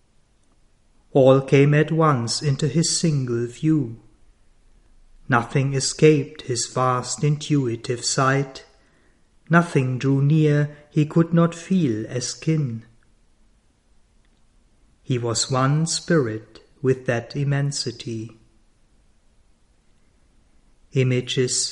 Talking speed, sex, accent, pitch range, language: 85 wpm, male, German, 120-145 Hz, German